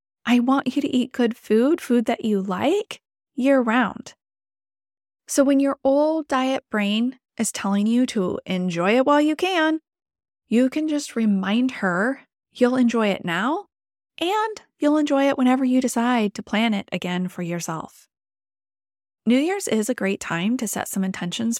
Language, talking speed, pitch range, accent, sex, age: English, 165 wpm, 195-260 Hz, American, female, 20-39